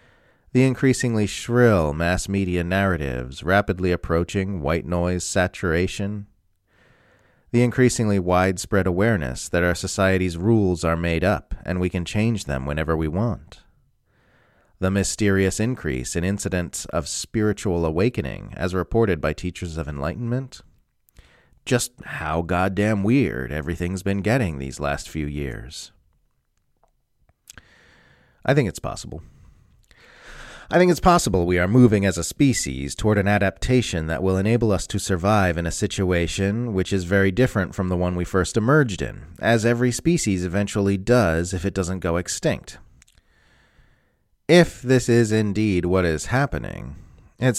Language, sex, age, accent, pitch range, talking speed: English, male, 40-59, American, 85-110 Hz, 140 wpm